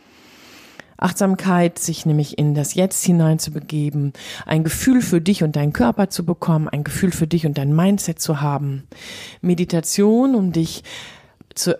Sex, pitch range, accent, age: female, 145-185 Hz, German, 40-59